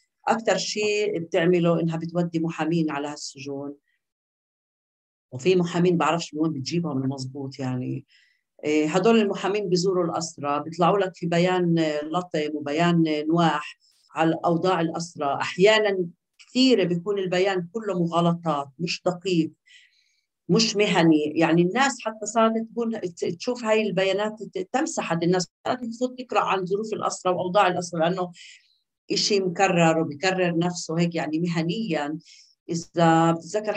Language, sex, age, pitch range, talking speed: Arabic, female, 50-69, 165-205 Hz, 120 wpm